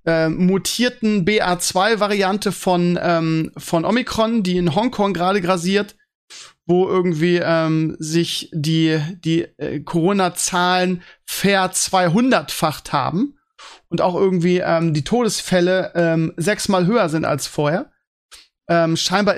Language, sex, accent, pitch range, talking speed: German, male, German, 165-195 Hz, 115 wpm